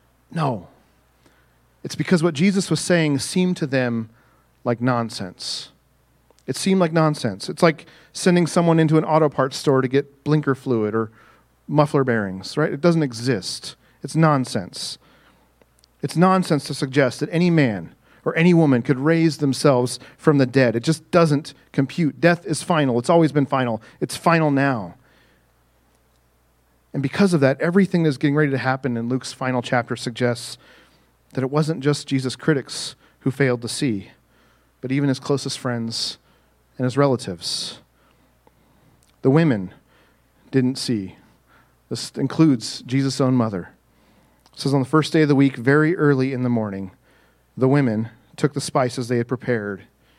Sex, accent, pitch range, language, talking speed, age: male, American, 120-155 Hz, English, 160 wpm, 40-59